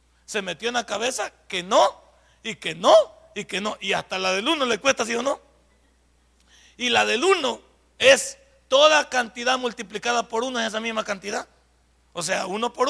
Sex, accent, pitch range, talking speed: male, Mexican, 185-245 Hz, 190 wpm